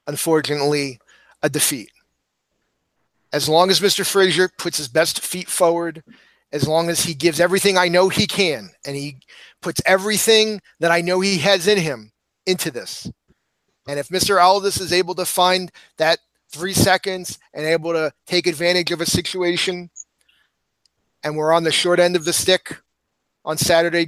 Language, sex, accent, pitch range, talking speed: English, male, American, 155-180 Hz, 165 wpm